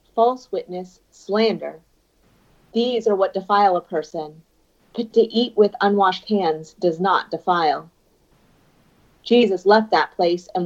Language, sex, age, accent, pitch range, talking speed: English, female, 40-59, American, 180-225 Hz, 130 wpm